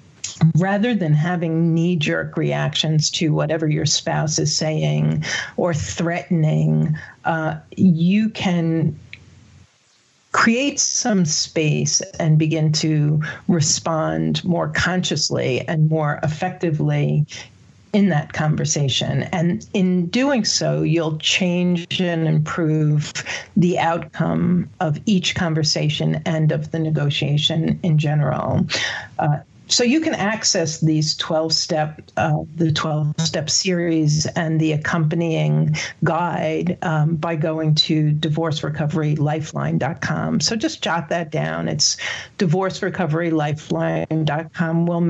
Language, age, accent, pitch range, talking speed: English, 40-59, American, 150-175 Hz, 105 wpm